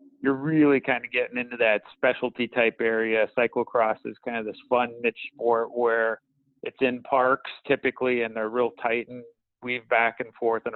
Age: 40-59